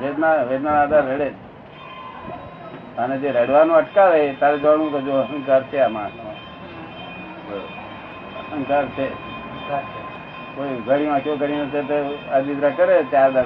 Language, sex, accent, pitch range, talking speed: Gujarati, male, native, 135-165 Hz, 85 wpm